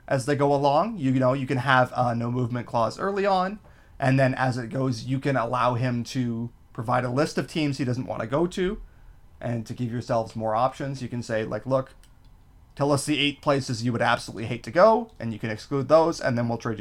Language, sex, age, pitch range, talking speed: English, male, 30-49, 120-150 Hz, 245 wpm